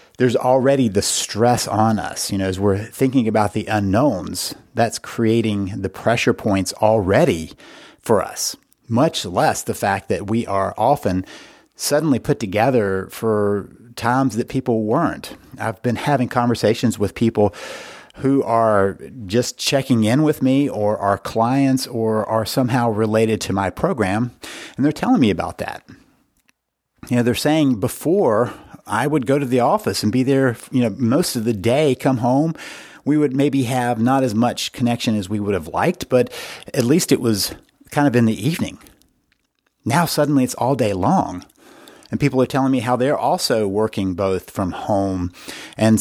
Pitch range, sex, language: 105-135 Hz, male, English